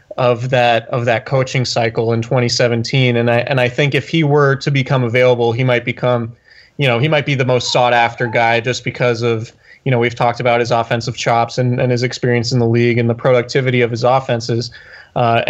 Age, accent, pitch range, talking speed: 20-39, American, 120-140 Hz, 220 wpm